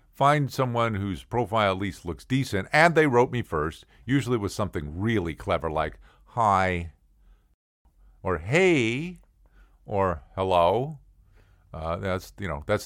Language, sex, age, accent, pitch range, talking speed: English, male, 50-69, American, 90-125 Hz, 135 wpm